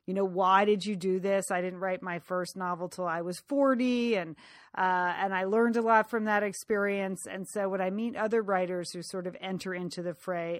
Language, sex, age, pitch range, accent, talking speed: English, female, 40-59, 180-230 Hz, American, 230 wpm